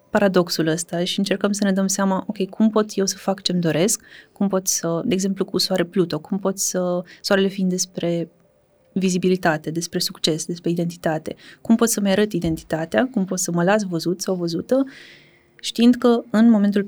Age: 20-39